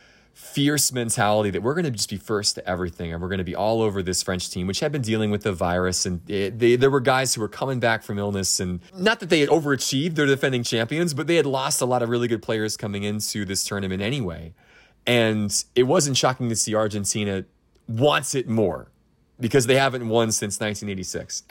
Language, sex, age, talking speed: English, male, 30-49, 225 wpm